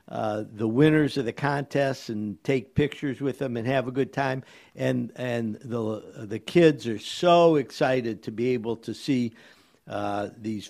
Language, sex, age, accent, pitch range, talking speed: English, male, 50-69, American, 110-140 Hz, 175 wpm